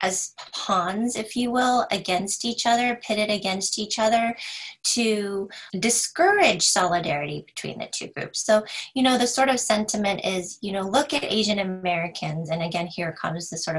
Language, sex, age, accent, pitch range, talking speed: English, female, 30-49, American, 165-215 Hz, 170 wpm